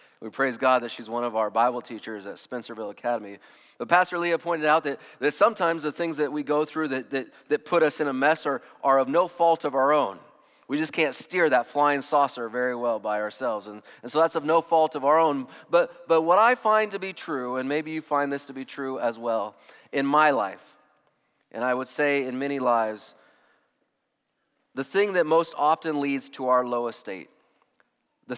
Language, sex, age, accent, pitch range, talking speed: English, male, 30-49, American, 120-155 Hz, 220 wpm